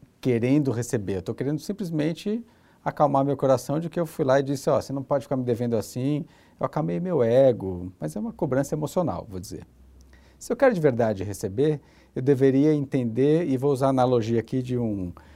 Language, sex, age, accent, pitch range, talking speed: Portuguese, male, 50-69, Brazilian, 100-150 Hz, 205 wpm